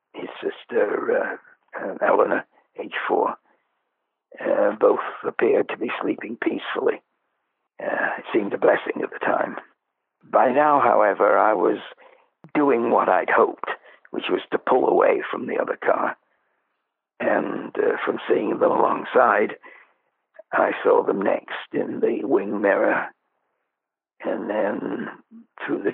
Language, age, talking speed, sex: English, 60-79, 135 wpm, male